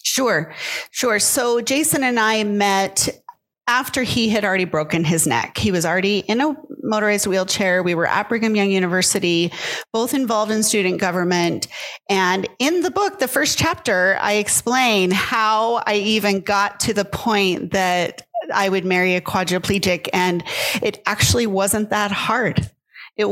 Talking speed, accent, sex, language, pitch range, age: 155 wpm, American, female, English, 190-235 Hz, 30-49